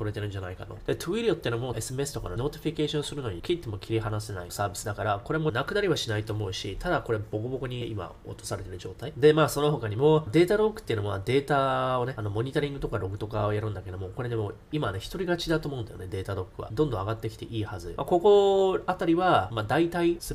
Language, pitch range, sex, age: Japanese, 105-150 Hz, male, 20-39